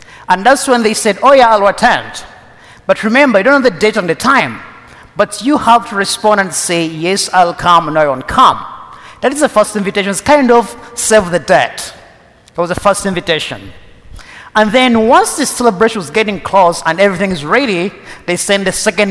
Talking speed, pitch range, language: 205 wpm, 175-220 Hz, English